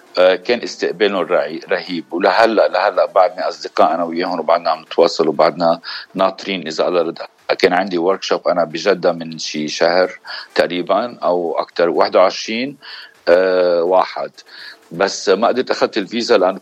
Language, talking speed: Arabic, 135 wpm